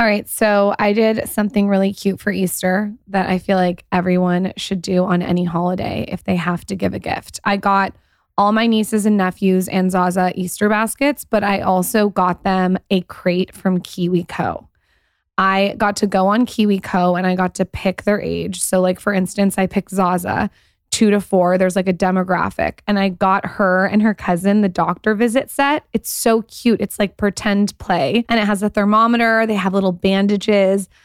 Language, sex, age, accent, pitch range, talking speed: English, female, 20-39, American, 185-210 Hz, 200 wpm